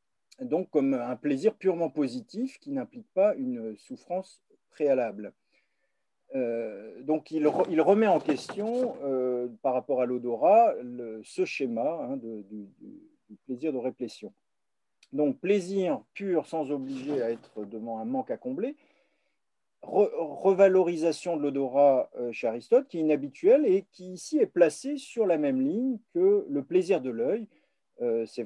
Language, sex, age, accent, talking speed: French, male, 50-69, French, 150 wpm